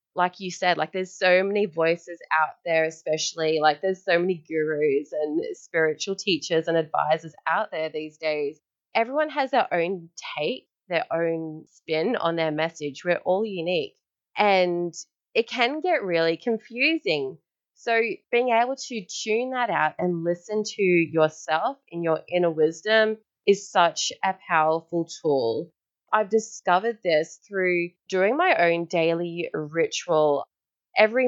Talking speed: 145 wpm